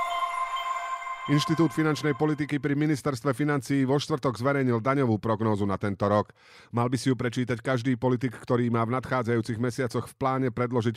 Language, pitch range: Slovak, 110-140 Hz